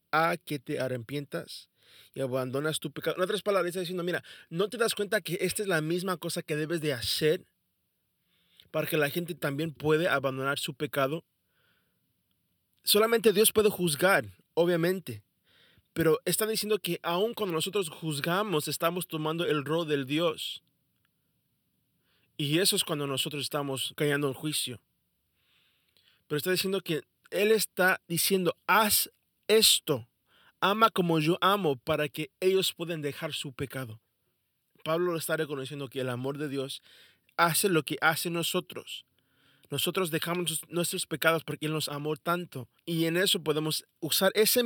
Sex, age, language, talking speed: male, 30-49, Spanish, 155 wpm